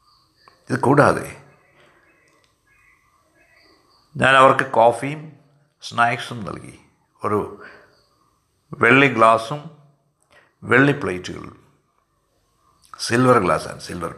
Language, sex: Malayalam, male